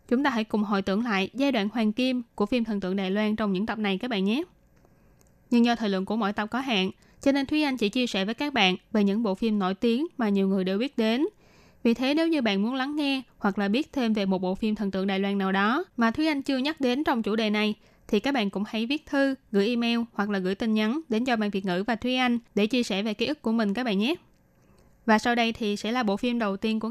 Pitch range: 205-245 Hz